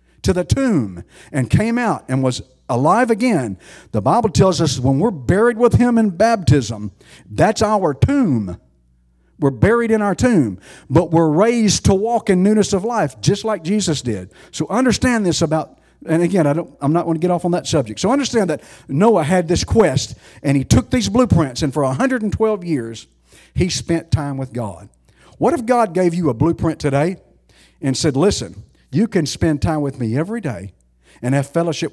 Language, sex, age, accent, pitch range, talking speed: English, male, 50-69, American, 115-170 Hz, 190 wpm